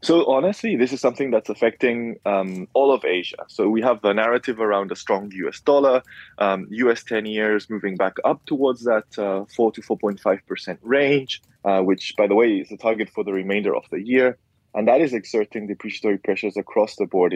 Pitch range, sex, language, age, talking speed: 95-120 Hz, male, English, 20-39, 205 wpm